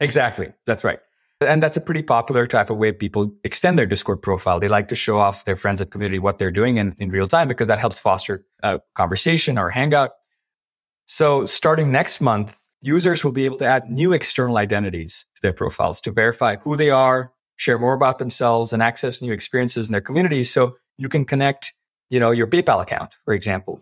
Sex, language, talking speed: male, English, 210 wpm